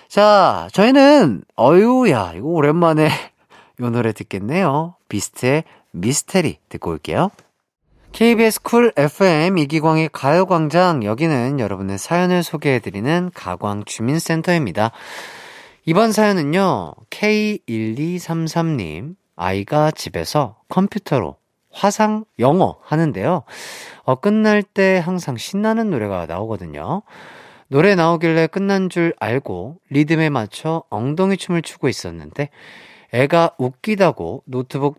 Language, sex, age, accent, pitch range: Korean, male, 40-59, native, 130-195 Hz